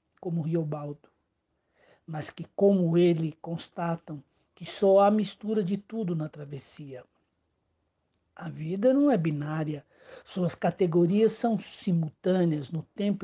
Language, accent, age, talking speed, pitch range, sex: Portuguese, Brazilian, 60-79, 120 wpm, 155-190 Hz, male